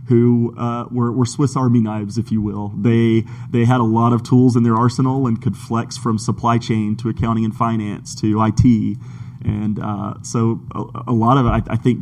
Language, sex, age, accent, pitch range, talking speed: English, male, 30-49, American, 110-125 Hz, 215 wpm